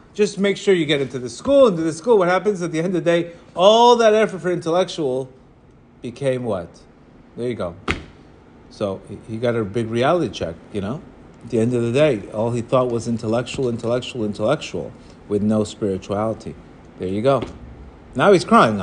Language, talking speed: English, 190 wpm